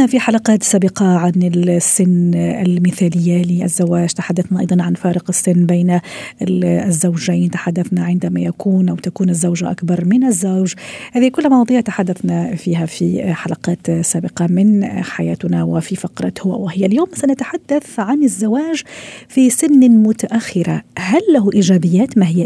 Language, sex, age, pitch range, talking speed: Arabic, female, 40-59, 175-225 Hz, 130 wpm